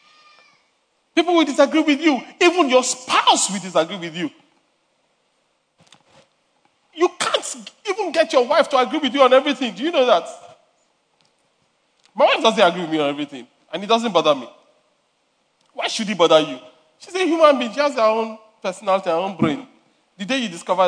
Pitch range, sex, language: 220-280 Hz, male, English